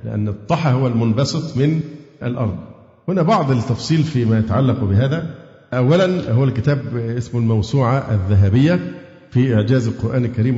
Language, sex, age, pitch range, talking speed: Arabic, male, 50-69, 105-145 Hz, 125 wpm